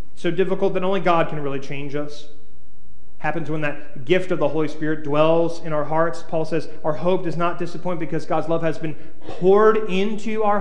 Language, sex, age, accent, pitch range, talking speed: English, male, 30-49, American, 150-185 Hz, 205 wpm